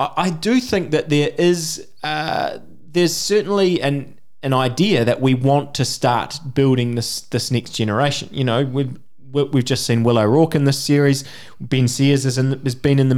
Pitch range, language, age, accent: 125-150 Hz, English, 20-39, Australian